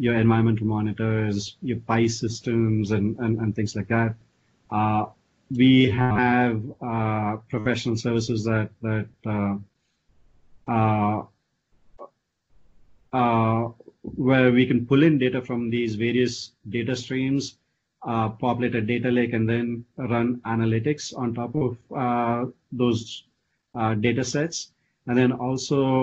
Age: 30-49